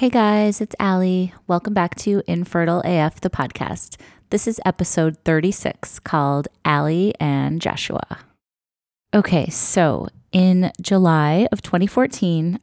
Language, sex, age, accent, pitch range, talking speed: English, female, 20-39, American, 150-185 Hz, 120 wpm